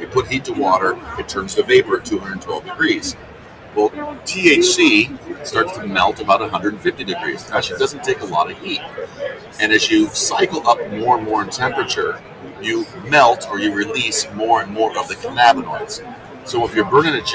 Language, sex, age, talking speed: English, male, 40-59, 185 wpm